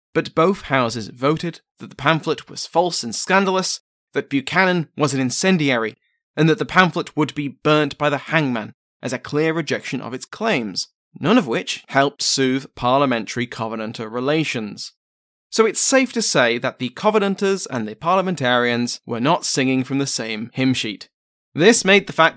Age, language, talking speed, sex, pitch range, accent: 20-39, English, 170 wpm, male, 125-170 Hz, British